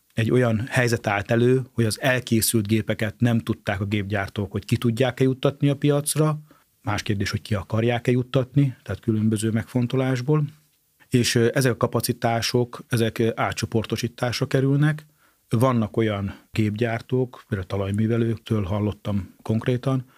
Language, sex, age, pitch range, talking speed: Hungarian, male, 40-59, 110-125 Hz, 130 wpm